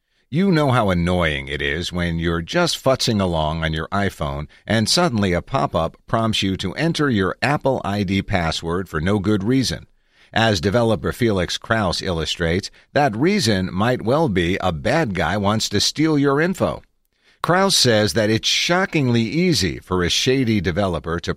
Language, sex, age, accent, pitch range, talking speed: English, male, 50-69, American, 90-125 Hz, 165 wpm